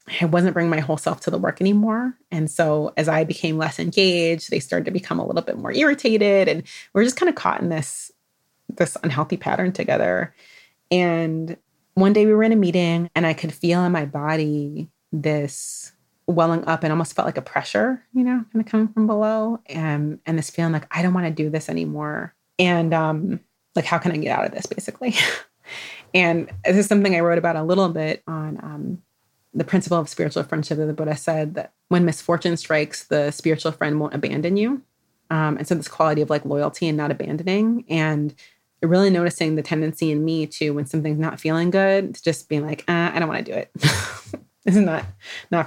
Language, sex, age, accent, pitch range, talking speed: English, female, 30-49, American, 150-180 Hz, 215 wpm